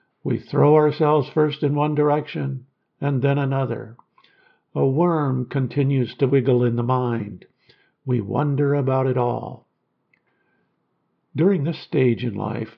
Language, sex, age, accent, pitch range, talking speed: English, male, 60-79, American, 125-150 Hz, 130 wpm